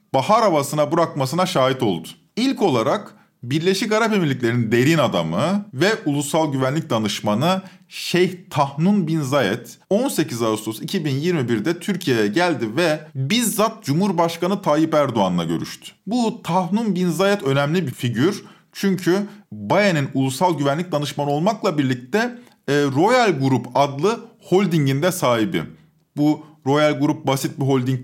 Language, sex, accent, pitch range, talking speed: Turkish, male, native, 135-195 Hz, 120 wpm